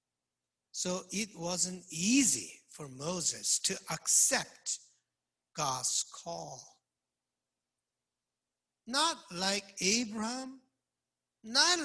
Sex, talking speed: male, 70 wpm